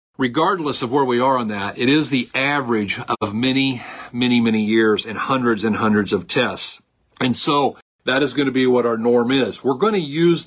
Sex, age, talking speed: male, 40-59, 210 wpm